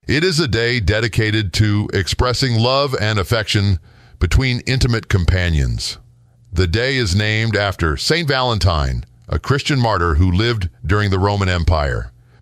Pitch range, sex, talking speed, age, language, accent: 90-120 Hz, male, 140 wpm, 50-69, English, American